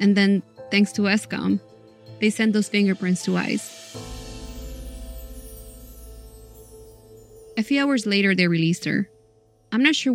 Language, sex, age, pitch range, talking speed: English, female, 20-39, 175-220 Hz, 125 wpm